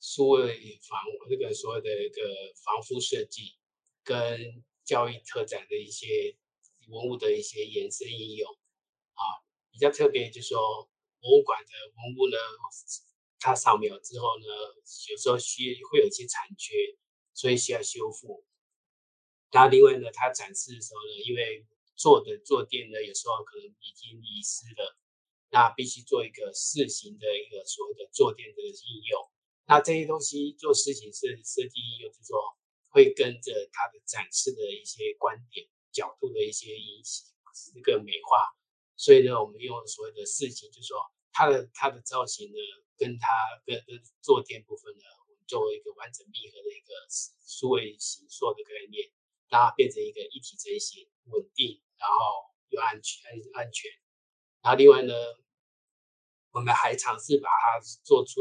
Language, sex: Chinese, male